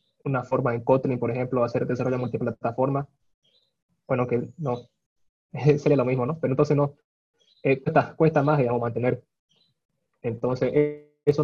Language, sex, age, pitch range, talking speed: Spanish, male, 20-39, 120-145 Hz, 145 wpm